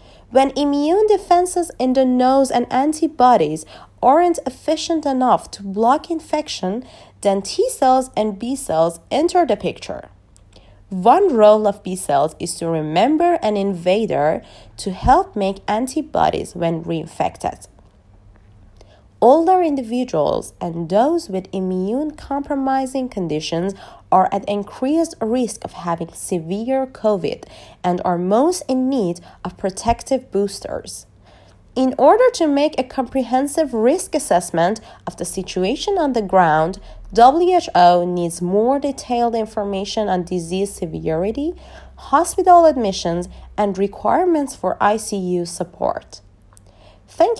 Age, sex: 30-49, female